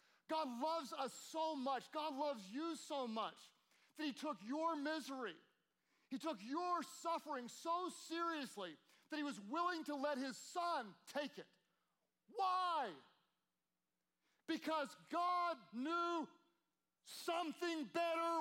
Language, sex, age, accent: English, male, 40-59, American